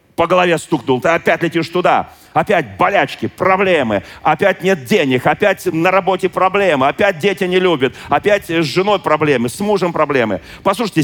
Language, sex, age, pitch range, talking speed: Russian, male, 40-59, 125-185 Hz, 160 wpm